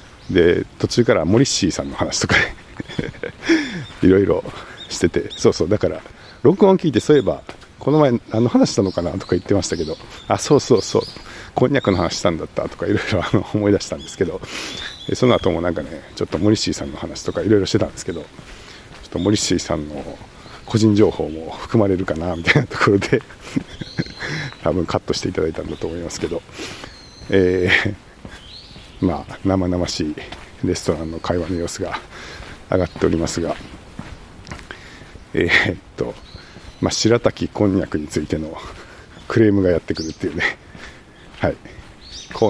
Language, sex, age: Japanese, male, 50-69